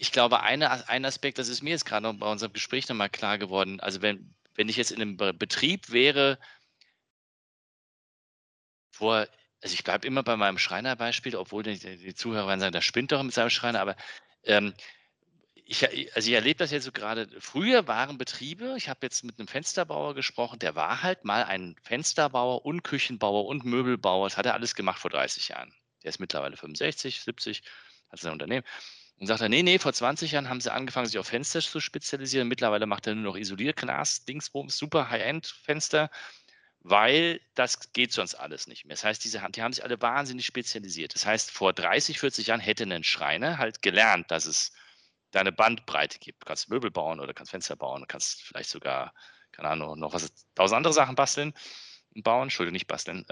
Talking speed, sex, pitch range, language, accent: 190 wpm, male, 105-135 Hz, German, German